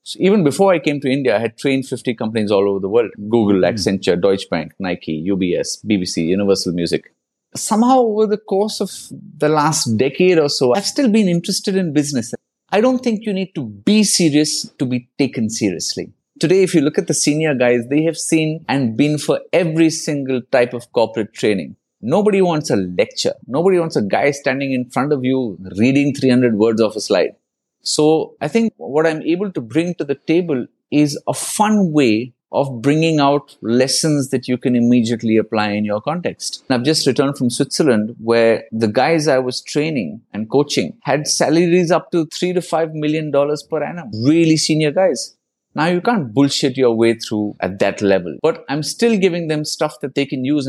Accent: Indian